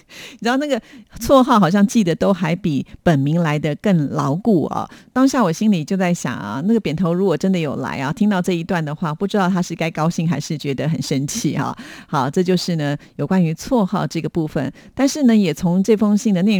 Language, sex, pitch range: Japanese, female, 160-205 Hz